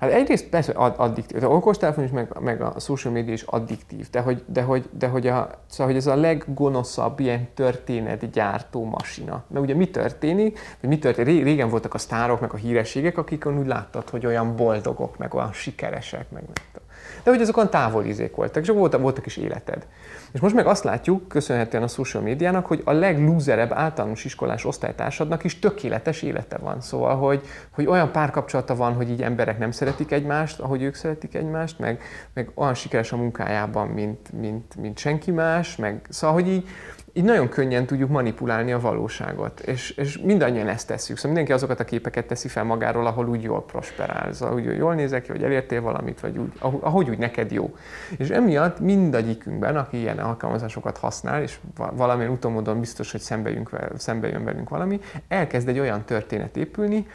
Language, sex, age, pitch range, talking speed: Hungarian, male, 30-49, 115-155 Hz, 180 wpm